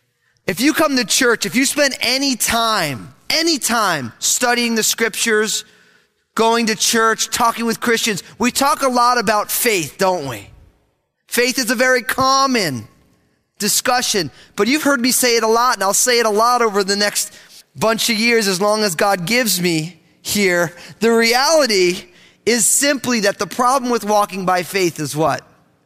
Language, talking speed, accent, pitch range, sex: English, 175 wpm, American, 200-270 Hz, male